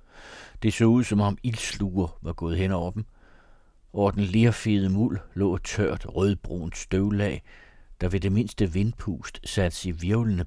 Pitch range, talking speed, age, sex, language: 85-100 Hz, 160 wpm, 60-79, male, Danish